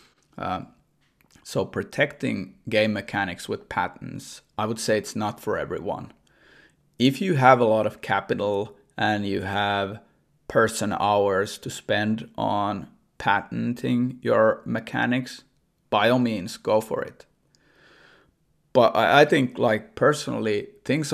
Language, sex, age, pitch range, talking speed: English, male, 30-49, 105-115 Hz, 125 wpm